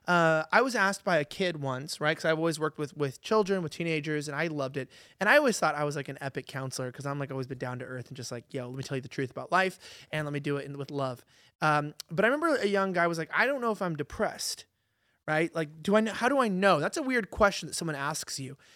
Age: 30-49